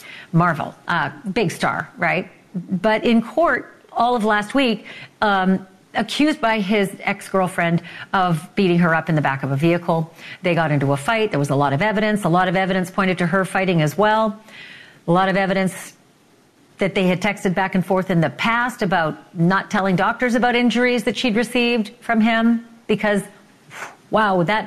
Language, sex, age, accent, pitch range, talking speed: English, female, 40-59, American, 175-230 Hz, 185 wpm